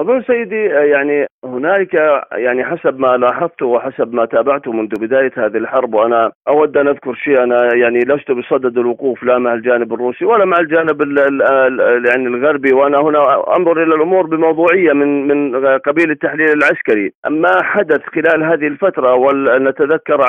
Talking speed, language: 150 wpm, Arabic